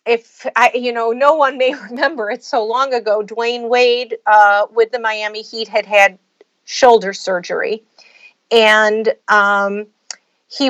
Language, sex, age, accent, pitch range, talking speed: English, female, 50-69, American, 215-275 Hz, 145 wpm